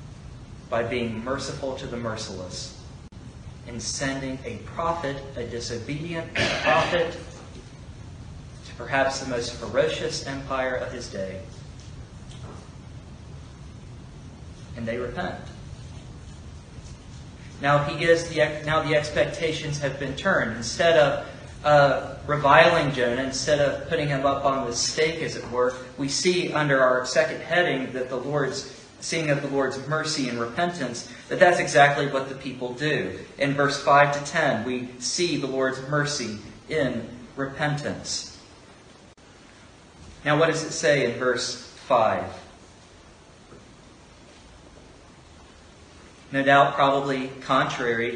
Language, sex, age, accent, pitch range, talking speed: English, male, 30-49, American, 120-145 Hz, 120 wpm